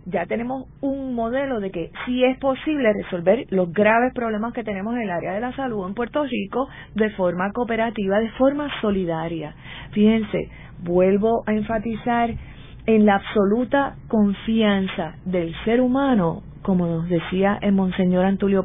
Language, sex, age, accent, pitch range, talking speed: Spanish, female, 40-59, American, 175-230 Hz, 150 wpm